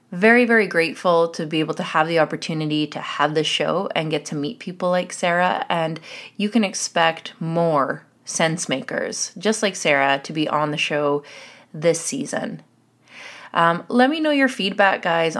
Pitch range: 155-195 Hz